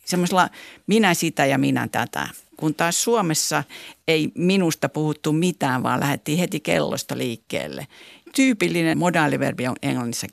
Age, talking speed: 50-69, 130 wpm